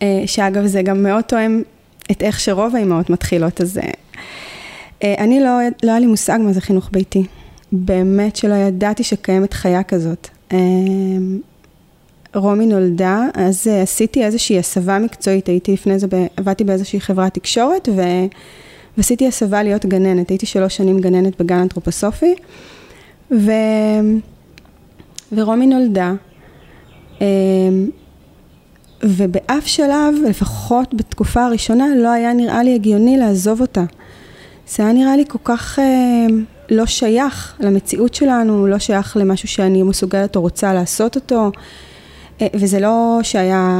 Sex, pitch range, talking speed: female, 190-230 Hz, 130 wpm